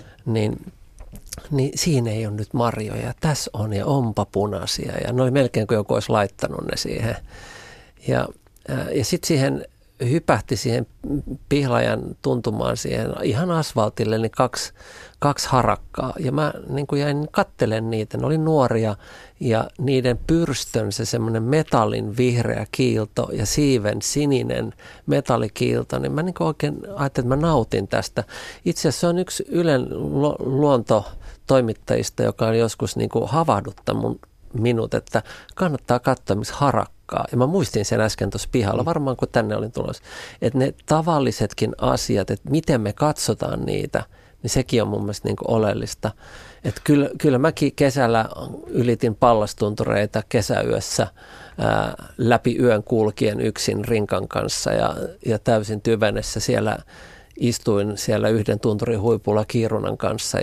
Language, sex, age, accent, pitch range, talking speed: Finnish, male, 50-69, native, 110-140 Hz, 140 wpm